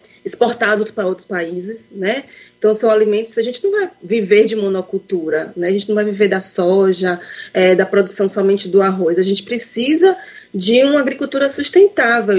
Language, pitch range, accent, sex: Portuguese, 190-230 Hz, Brazilian, female